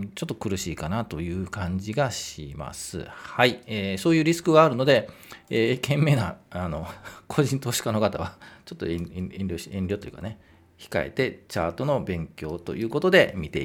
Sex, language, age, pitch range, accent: male, Japanese, 40-59, 90-145 Hz, native